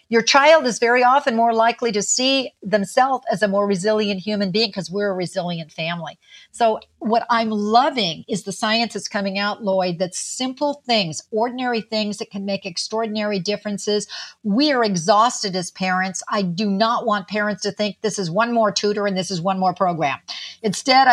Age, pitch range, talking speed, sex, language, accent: 50-69, 195-250 Hz, 185 wpm, female, English, American